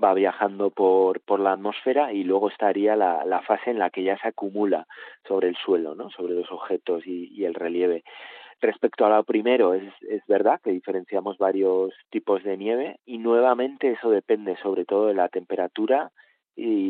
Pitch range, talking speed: 95-110 Hz, 185 wpm